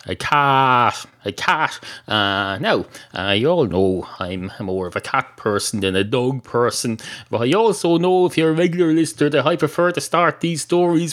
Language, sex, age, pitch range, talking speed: English, male, 30-49, 110-160 Hz, 195 wpm